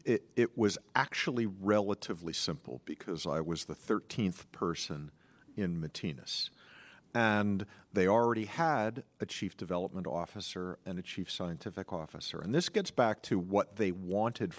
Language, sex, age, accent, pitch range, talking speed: English, male, 50-69, American, 95-120 Hz, 145 wpm